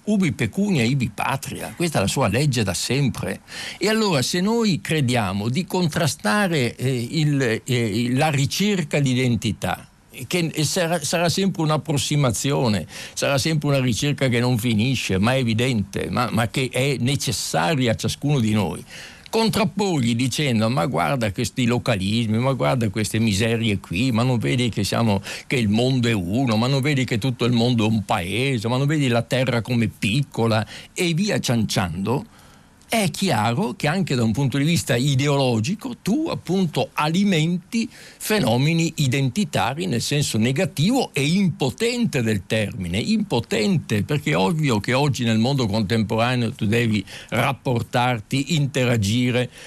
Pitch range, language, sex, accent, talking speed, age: 115-150 Hz, Italian, male, native, 150 wpm, 60-79